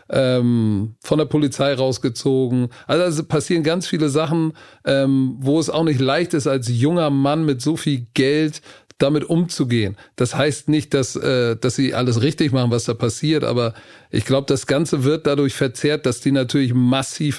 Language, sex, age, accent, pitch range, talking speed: German, male, 40-59, German, 125-150 Hz, 185 wpm